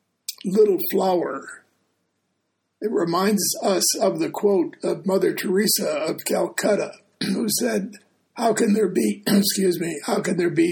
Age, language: 50-69, English